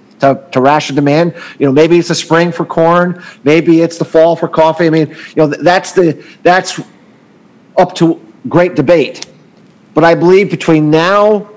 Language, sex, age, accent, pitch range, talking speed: English, male, 40-59, American, 135-170 Hz, 175 wpm